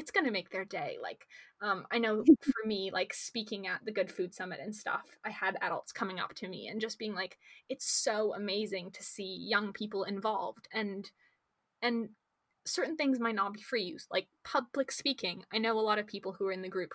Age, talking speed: 20-39, 225 wpm